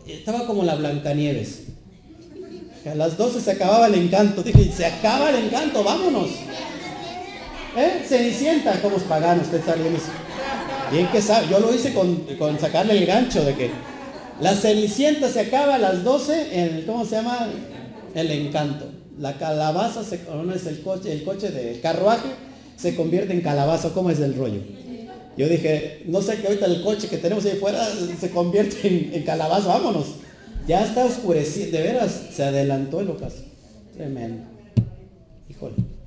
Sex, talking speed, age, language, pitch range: male, 160 wpm, 40-59, Spanish, 150-210 Hz